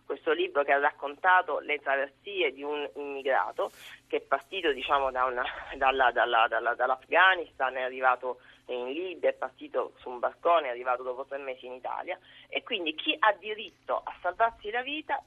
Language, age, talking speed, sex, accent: Italian, 30-49, 175 wpm, female, native